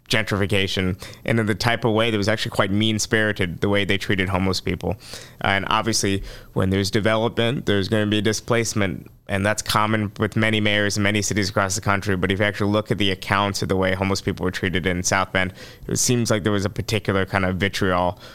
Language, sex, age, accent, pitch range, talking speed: English, male, 20-39, American, 100-115 Hz, 225 wpm